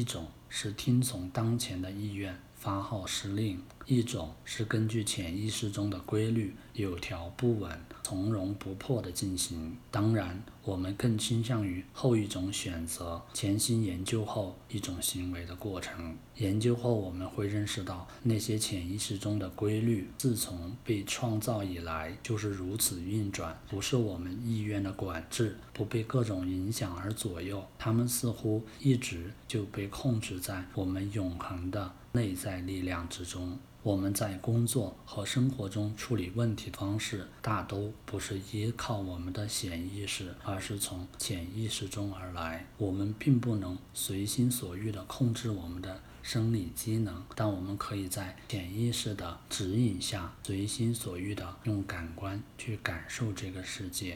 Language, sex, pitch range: Chinese, male, 95-115 Hz